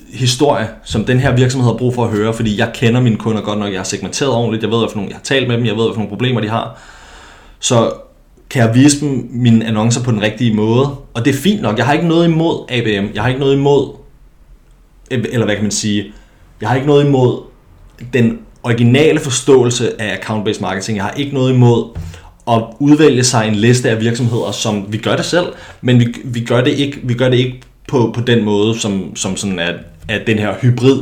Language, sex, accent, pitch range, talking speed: Danish, male, native, 110-125 Hz, 225 wpm